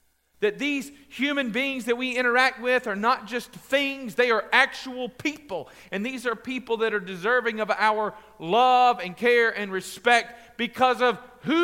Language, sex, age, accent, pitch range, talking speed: English, male, 40-59, American, 195-265 Hz, 170 wpm